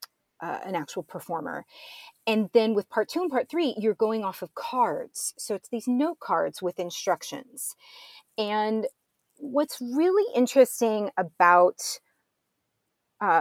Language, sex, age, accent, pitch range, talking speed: English, female, 30-49, American, 180-235 Hz, 135 wpm